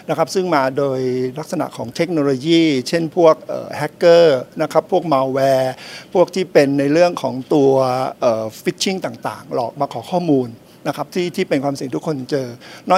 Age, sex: 60-79, male